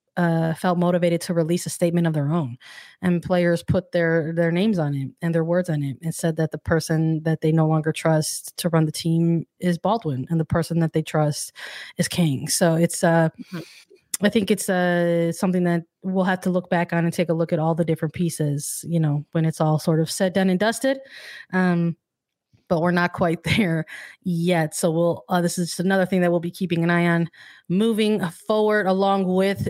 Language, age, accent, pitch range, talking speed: English, 20-39, American, 170-195 Hz, 220 wpm